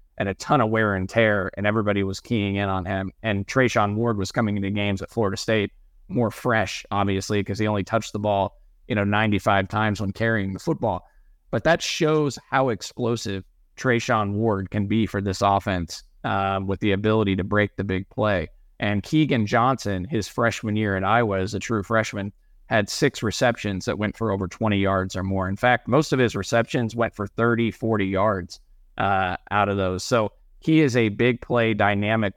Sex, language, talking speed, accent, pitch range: male, English, 200 wpm, American, 100-115 Hz